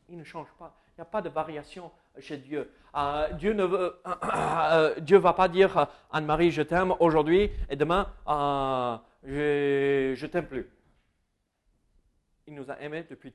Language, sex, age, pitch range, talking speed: French, male, 40-59, 150-235 Hz, 170 wpm